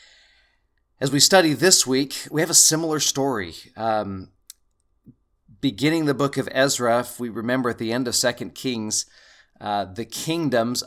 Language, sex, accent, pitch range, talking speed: English, male, American, 110-135 Hz, 155 wpm